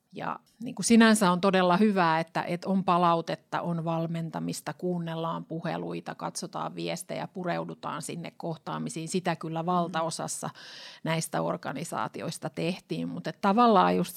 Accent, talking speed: native, 115 wpm